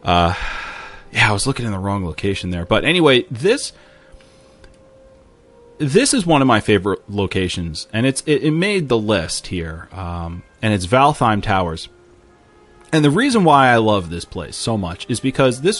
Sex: male